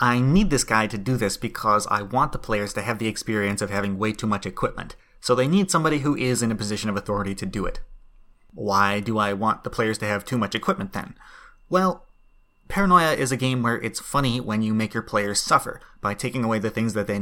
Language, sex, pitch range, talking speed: English, male, 105-130 Hz, 240 wpm